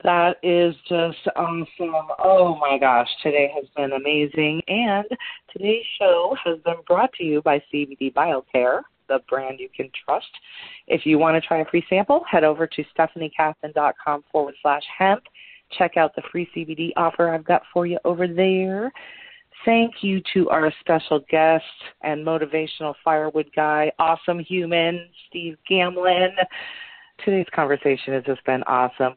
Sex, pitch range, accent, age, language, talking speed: female, 145-180 Hz, American, 30-49, English, 150 wpm